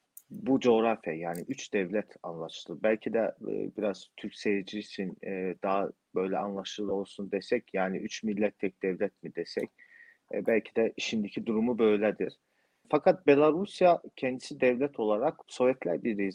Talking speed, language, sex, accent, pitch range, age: 140 wpm, Turkish, male, native, 95-120 Hz, 40-59